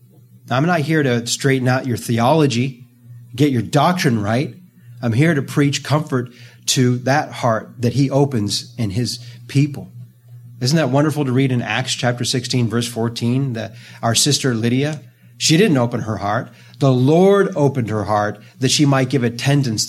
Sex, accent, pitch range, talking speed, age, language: male, American, 110-140 Hz, 170 wpm, 40-59, English